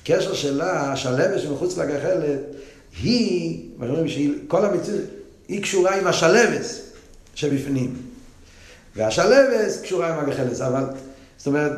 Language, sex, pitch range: Hebrew, male, 130-195 Hz